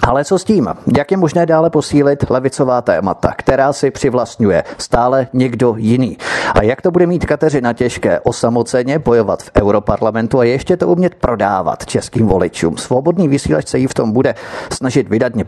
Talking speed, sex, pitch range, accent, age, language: 165 wpm, male, 110-140 Hz, native, 30-49, Czech